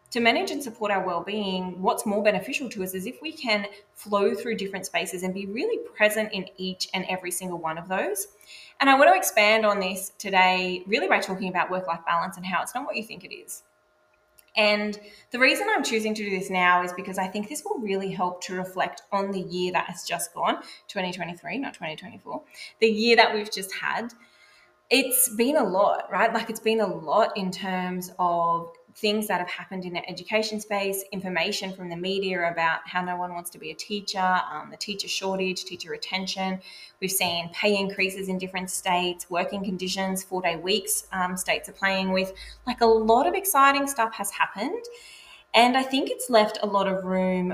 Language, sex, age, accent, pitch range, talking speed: English, female, 20-39, Australian, 180-215 Hz, 205 wpm